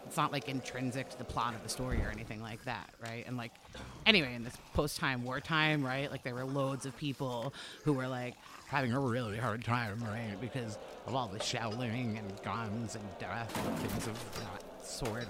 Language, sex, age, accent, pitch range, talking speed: English, female, 30-49, American, 120-140 Hz, 205 wpm